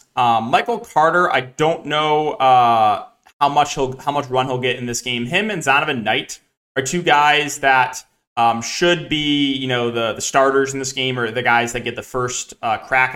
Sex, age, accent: male, 20-39, American